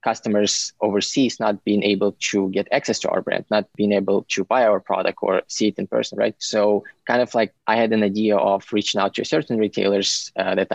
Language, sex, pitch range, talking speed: English, male, 100-110 Hz, 225 wpm